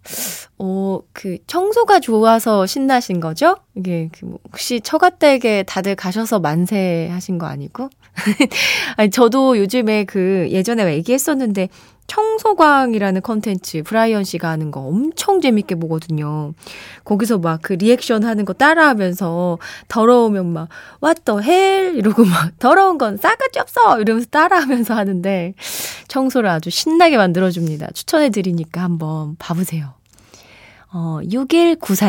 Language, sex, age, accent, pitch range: Korean, female, 20-39, native, 175-255 Hz